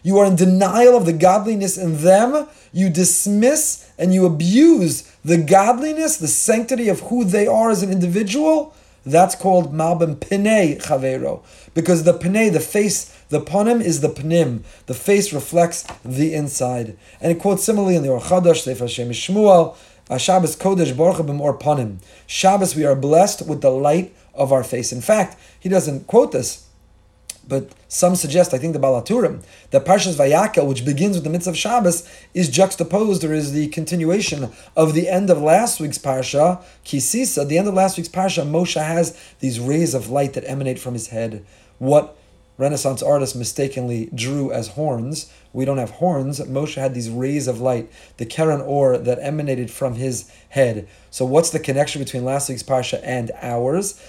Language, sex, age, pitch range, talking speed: English, male, 30-49, 130-185 Hz, 175 wpm